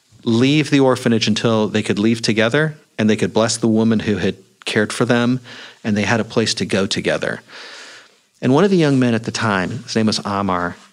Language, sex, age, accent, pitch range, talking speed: English, male, 40-59, American, 105-130 Hz, 220 wpm